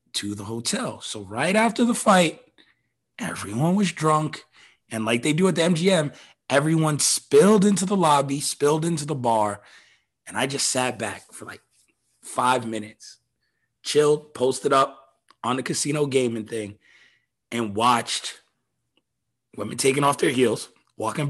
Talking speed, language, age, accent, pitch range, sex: 145 wpm, English, 30-49, American, 125-180 Hz, male